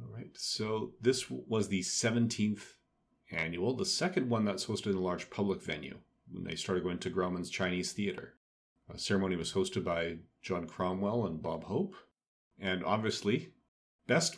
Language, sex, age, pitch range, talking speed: English, male, 40-59, 95-110 Hz, 165 wpm